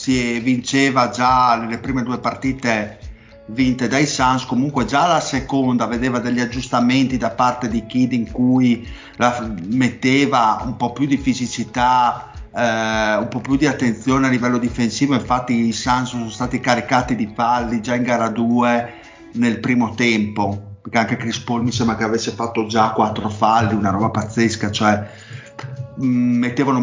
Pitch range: 115-130 Hz